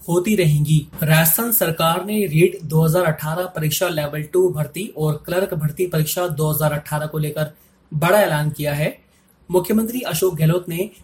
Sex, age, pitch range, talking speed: male, 30-49, 155-190 Hz, 140 wpm